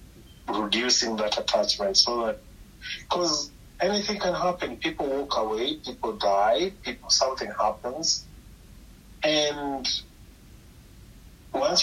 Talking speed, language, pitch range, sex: 95 wpm, English, 105-130 Hz, male